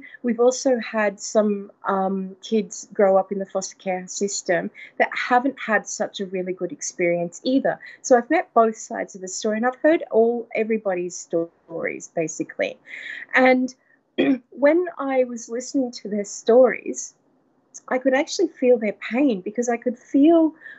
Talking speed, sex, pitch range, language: 160 wpm, female, 195-255 Hz, English